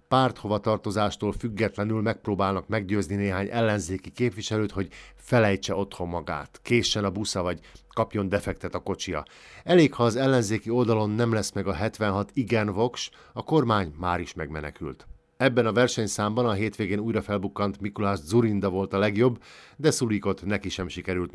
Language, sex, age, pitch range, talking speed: Hungarian, male, 50-69, 95-115 Hz, 150 wpm